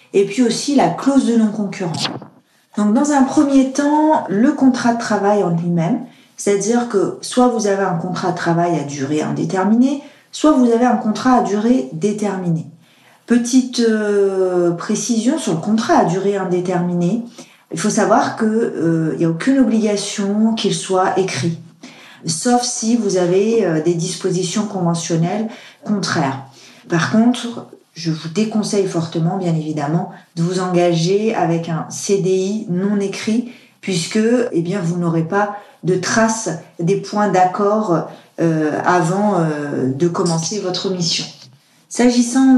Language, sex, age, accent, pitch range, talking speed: French, female, 40-59, French, 175-230 Hz, 145 wpm